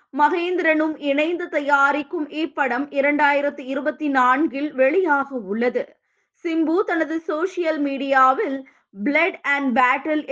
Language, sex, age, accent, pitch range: Tamil, female, 20-39, native, 265-325 Hz